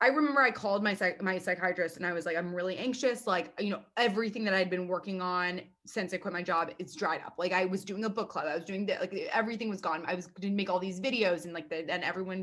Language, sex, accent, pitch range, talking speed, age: English, female, American, 175-220 Hz, 285 wpm, 20-39